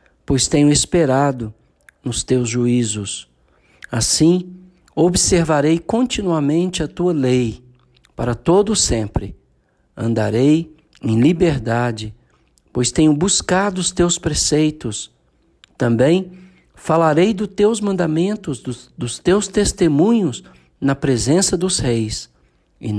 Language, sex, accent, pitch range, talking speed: Portuguese, male, Brazilian, 110-165 Hz, 100 wpm